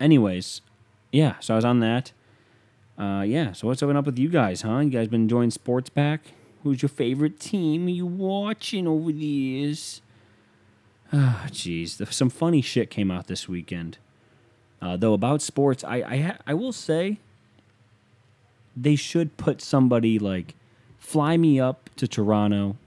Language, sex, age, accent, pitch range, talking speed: English, male, 30-49, American, 105-125 Hz, 160 wpm